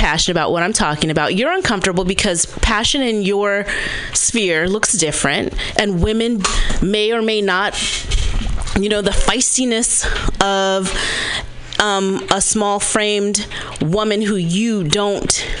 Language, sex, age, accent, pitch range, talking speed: English, female, 30-49, American, 185-230 Hz, 130 wpm